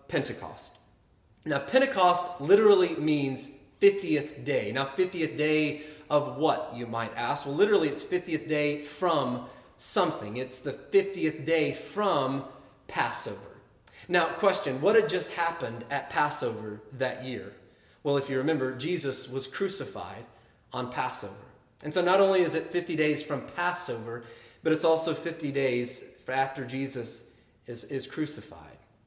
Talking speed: 140 wpm